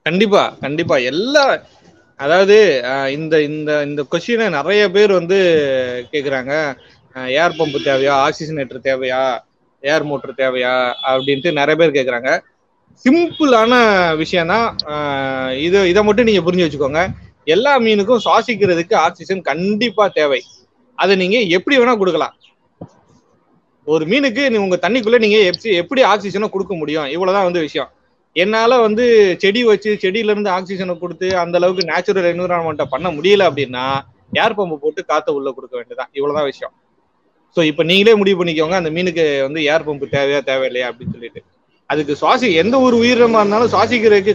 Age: 20-39